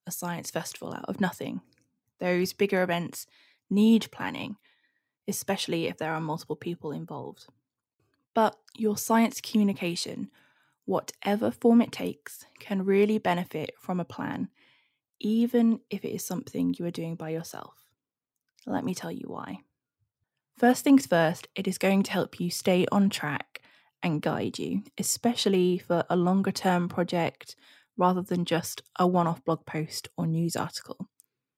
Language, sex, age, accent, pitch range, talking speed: English, female, 10-29, British, 175-205 Hz, 145 wpm